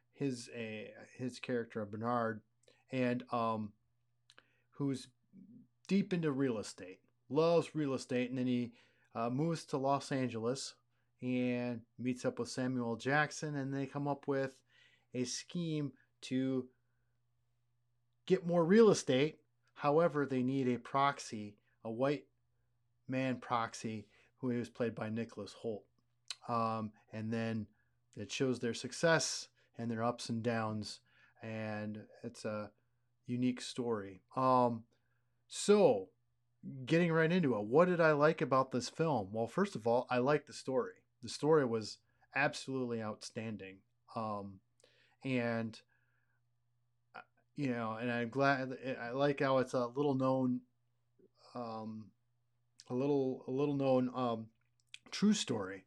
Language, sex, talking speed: English, male, 130 wpm